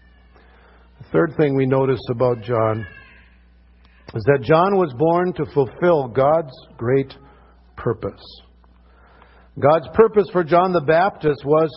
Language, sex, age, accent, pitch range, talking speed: English, male, 50-69, American, 130-195 Hz, 120 wpm